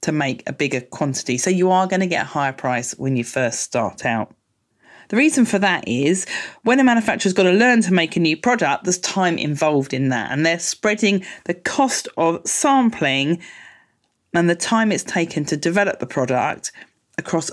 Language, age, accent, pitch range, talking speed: English, 40-59, British, 140-195 Hz, 190 wpm